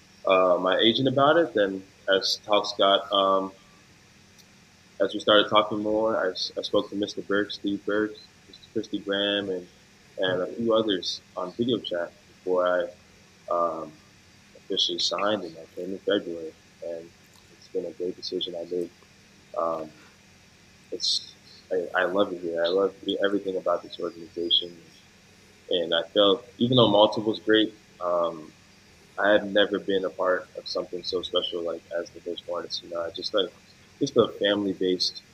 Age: 20-39